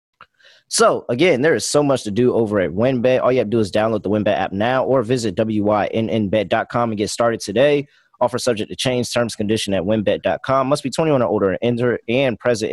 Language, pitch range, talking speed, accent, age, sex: English, 105-130 Hz, 210 wpm, American, 20-39, male